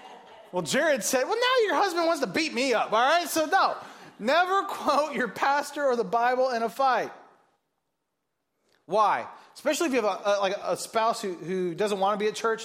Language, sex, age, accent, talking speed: English, male, 30-49, American, 210 wpm